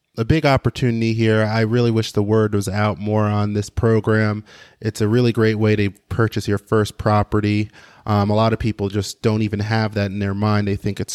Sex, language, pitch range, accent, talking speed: male, English, 105-115 Hz, American, 220 wpm